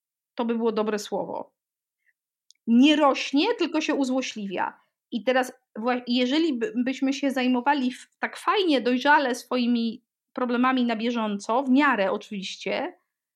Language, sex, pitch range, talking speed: Polish, female, 235-285 Hz, 120 wpm